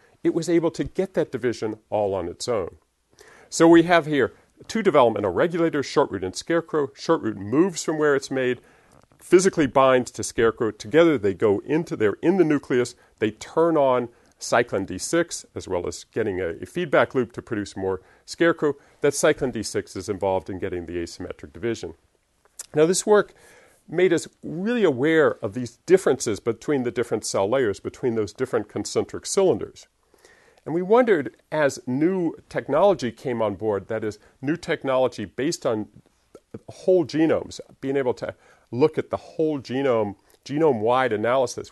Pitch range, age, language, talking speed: 115-170 Hz, 50-69, English, 165 wpm